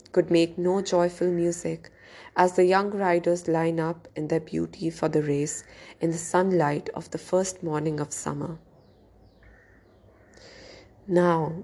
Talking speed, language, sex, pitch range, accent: 140 wpm, English, female, 155-195 Hz, Indian